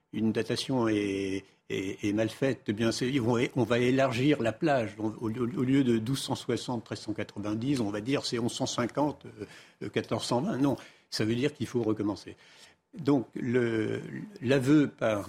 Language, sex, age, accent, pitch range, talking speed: French, male, 60-79, French, 110-140 Hz, 135 wpm